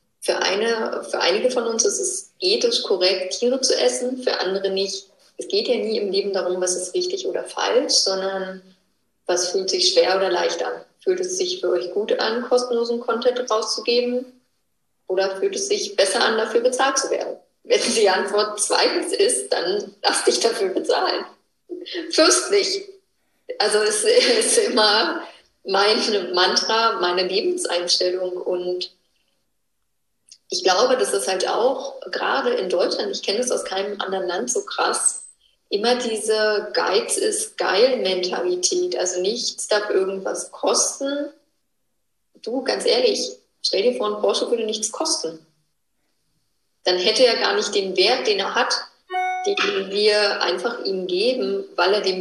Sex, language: female, German